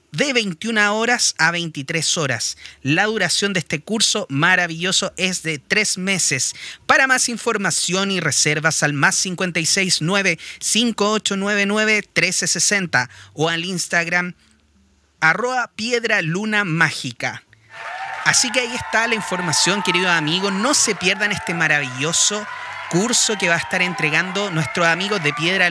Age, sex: 30-49, male